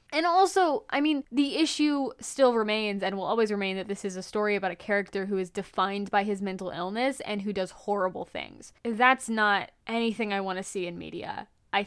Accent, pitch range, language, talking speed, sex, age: American, 190-235 Hz, English, 210 wpm, female, 10-29